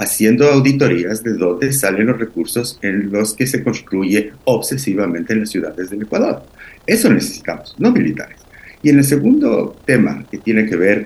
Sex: male